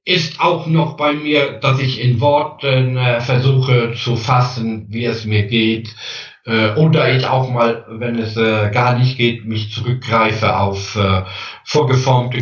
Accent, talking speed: German, 160 wpm